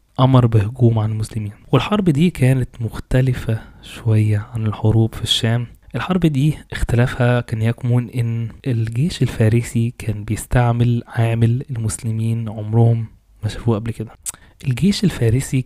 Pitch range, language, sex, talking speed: 110-125 Hz, Arabic, male, 125 wpm